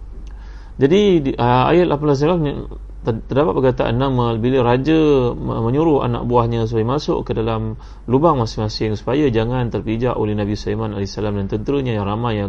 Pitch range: 105-120 Hz